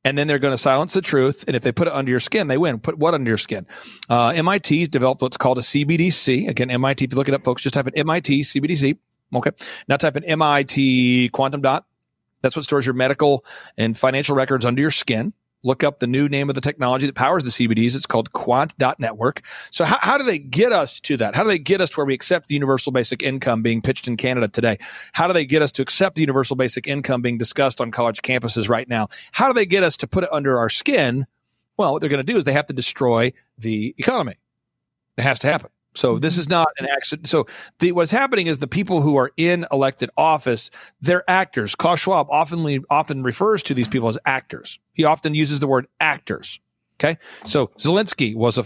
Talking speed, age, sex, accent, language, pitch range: 235 wpm, 40-59, male, American, English, 125-155 Hz